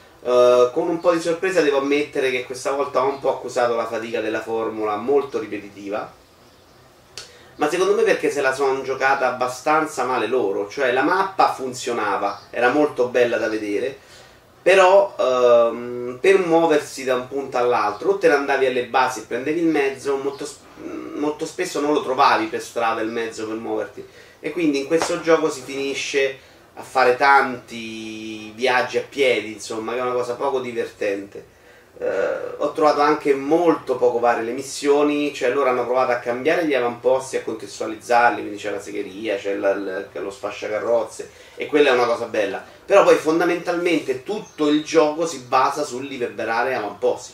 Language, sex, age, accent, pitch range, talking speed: Italian, male, 30-49, native, 120-200 Hz, 170 wpm